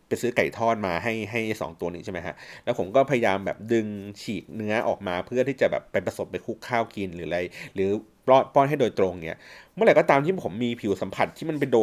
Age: 30-49